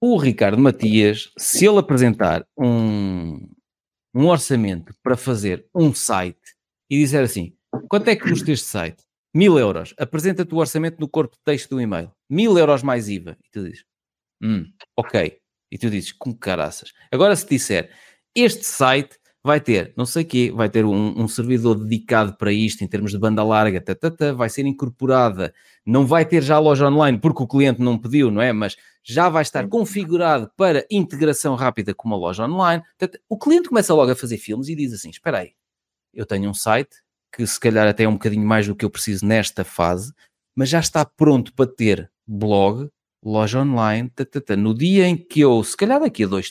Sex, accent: male, Portuguese